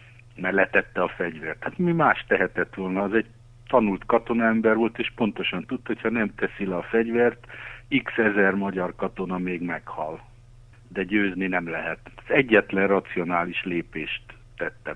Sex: male